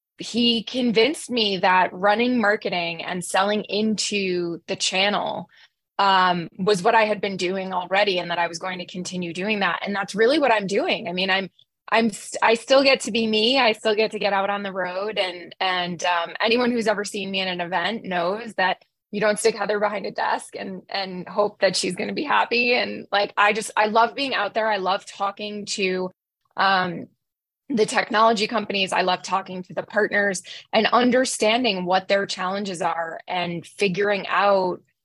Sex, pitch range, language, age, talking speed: female, 185-215 Hz, English, 20-39, 195 wpm